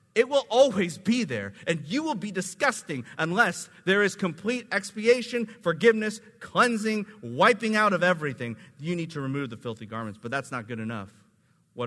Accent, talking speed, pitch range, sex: American, 170 wpm, 115-180 Hz, male